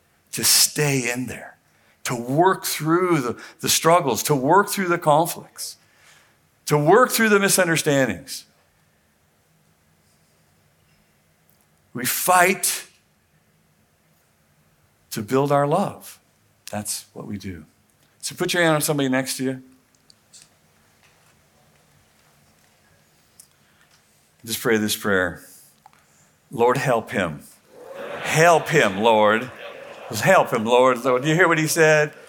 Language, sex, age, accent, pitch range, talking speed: English, male, 50-69, American, 100-150 Hz, 110 wpm